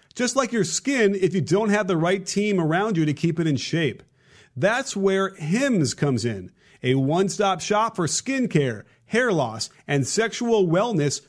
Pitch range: 155-210 Hz